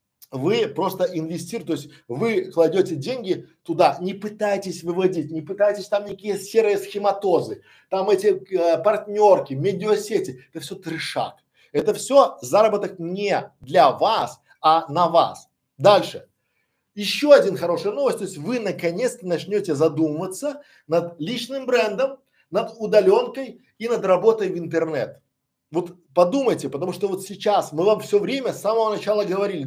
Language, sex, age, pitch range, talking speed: Russian, male, 50-69, 170-230 Hz, 140 wpm